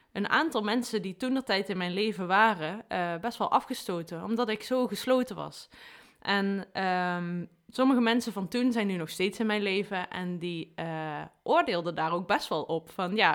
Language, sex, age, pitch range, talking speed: Dutch, female, 20-39, 180-225 Hz, 190 wpm